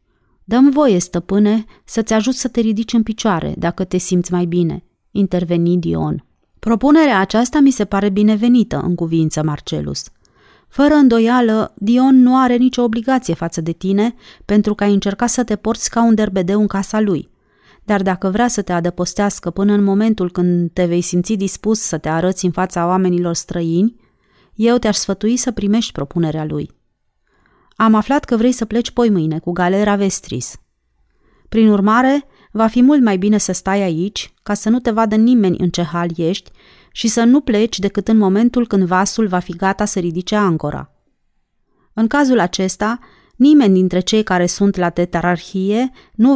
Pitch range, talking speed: 175-225 Hz, 175 wpm